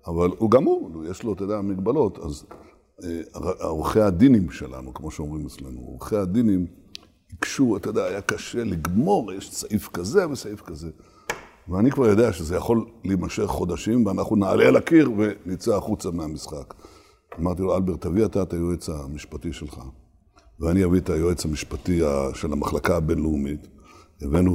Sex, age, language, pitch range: male, 60-79, Hebrew, 80-105 Hz